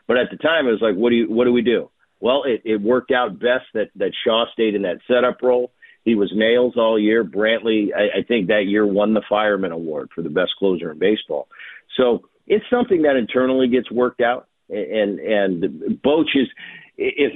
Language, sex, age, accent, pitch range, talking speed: English, male, 50-69, American, 105-135 Hz, 215 wpm